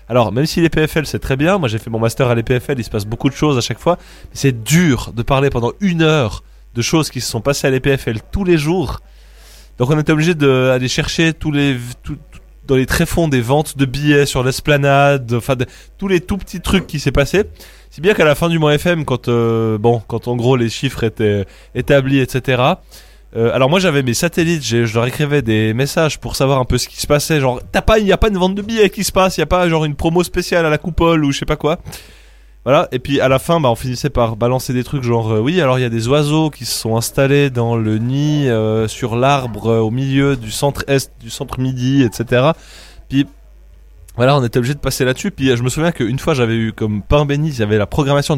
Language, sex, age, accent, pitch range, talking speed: French, male, 20-39, French, 120-155 Hz, 250 wpm